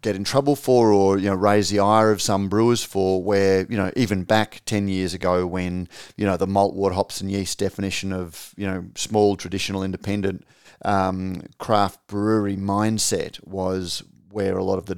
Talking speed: 190 wpm